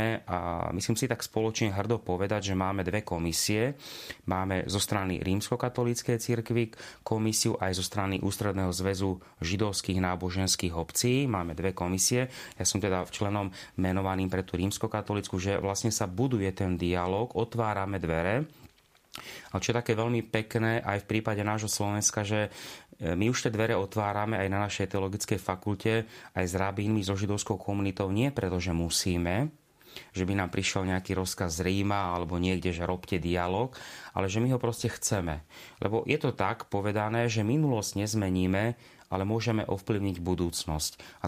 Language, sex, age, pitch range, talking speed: Slovak, male, 30-49, 95-110 Hz, 155 wpm